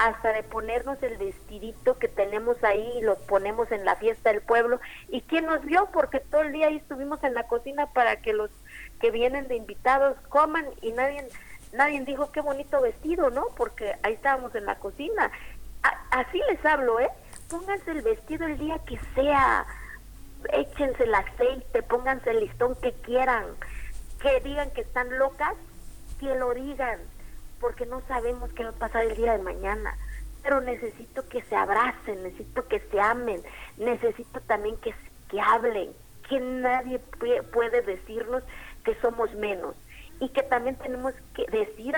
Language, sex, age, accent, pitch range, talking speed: Spanish, female, 40-59, Mexican, 225-295 Hz, 170 wpm